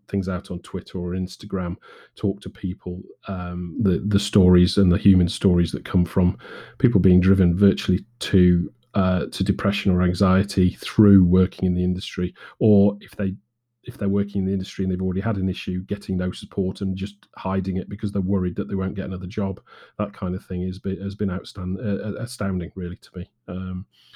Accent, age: British, 30-49